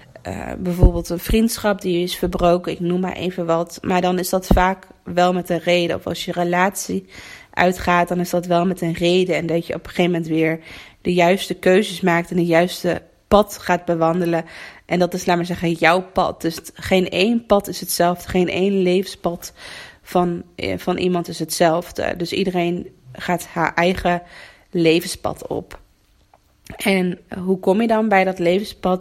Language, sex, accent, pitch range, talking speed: Dutch, female, Dutch, 170-185 Hz, 180 wpm